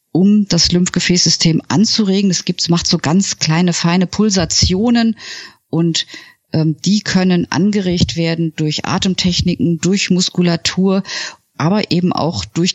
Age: 50-69